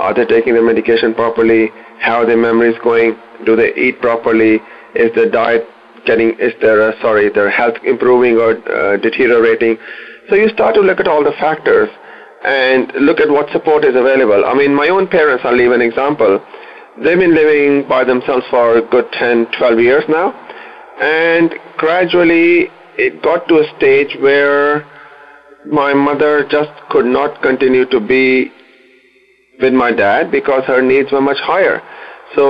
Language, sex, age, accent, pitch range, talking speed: English, male, 30-49, Indian, 120-150 Hz, 170 wpm